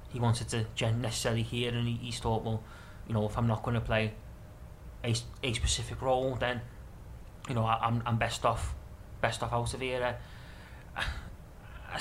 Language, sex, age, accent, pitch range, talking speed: English, male, 20-39, British, 110-120 Hz, 185 wpm